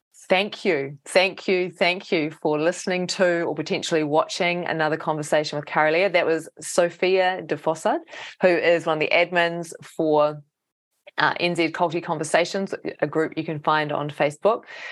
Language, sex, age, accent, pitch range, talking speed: English, female, 20-39, Australian, 150-185 Hz, 155 wpm